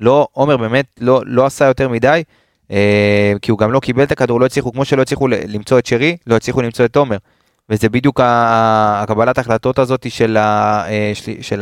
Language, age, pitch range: Hebrew, 20-39, 110-135 Hz